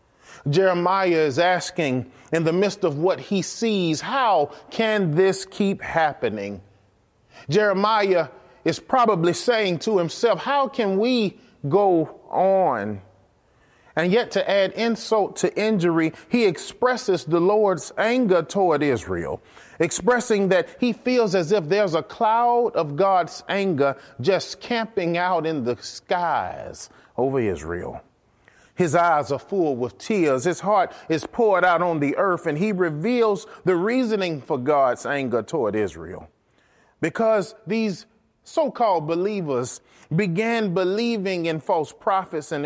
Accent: American